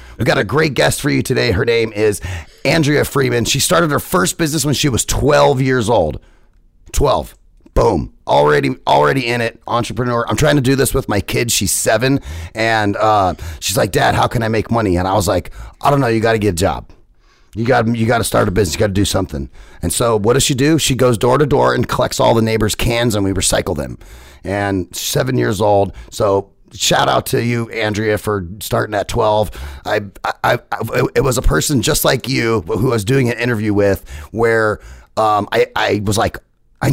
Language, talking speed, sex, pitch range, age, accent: English, 220 wpm, male, 95-130 Hz, 30-49, American